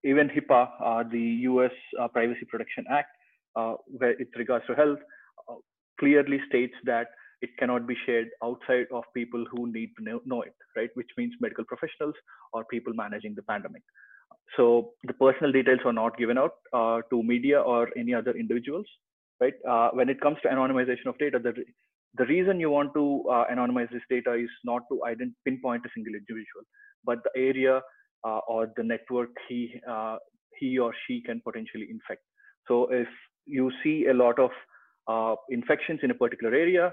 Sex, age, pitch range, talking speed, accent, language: male, 30-49, 120-150 Hz, 180 wpm, Indian, English